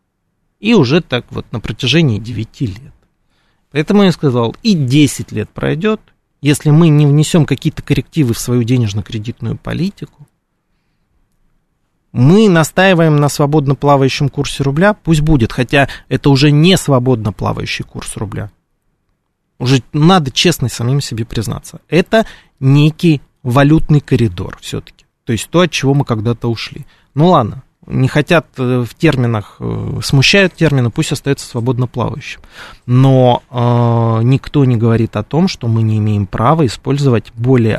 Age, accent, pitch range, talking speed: 20-39, native, 115-150 Hz, 140 wpm